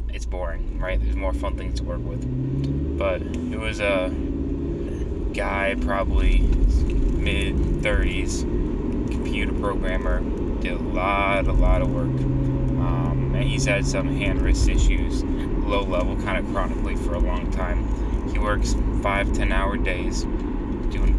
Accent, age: American, 20-39